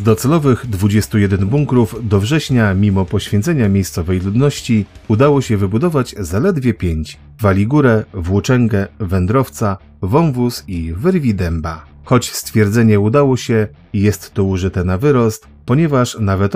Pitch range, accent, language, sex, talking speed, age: 95-120 Hz, native, Polish, male, 120 wpm, 30-49